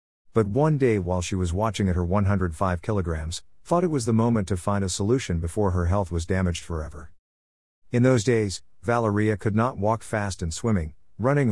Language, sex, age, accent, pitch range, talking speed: English, male, 50-69, American, 85-110 Hz, 195 wpm